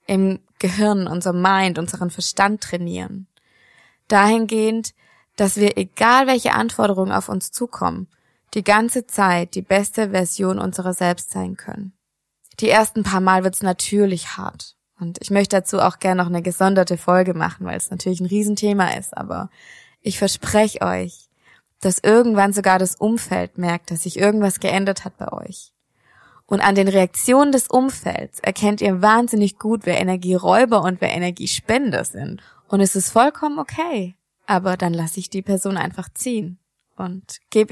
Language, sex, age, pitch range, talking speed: German, female, 20-39, 180-205 Hz, 155 wpm